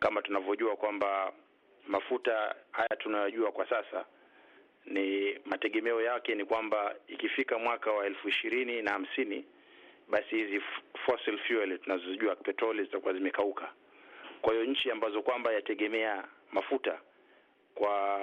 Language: Swahili